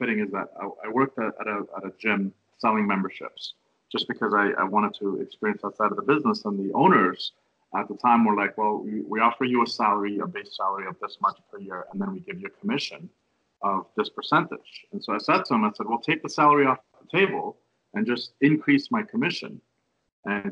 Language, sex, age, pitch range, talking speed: English, male, 40-59, 105-150 Hz, 225 wpm